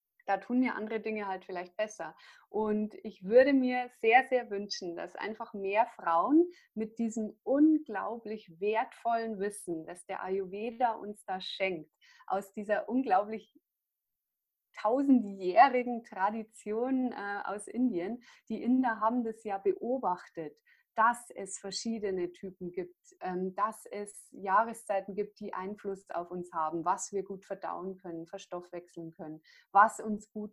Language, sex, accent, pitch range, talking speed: German, female, German, 195-255 Hz, 130 wpm